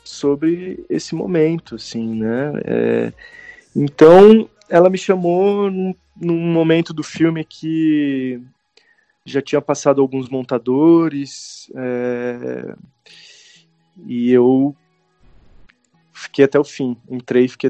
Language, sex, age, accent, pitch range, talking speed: Portuguese, male, 20-39, Brazilian, 115-145 Hz, 100 wpm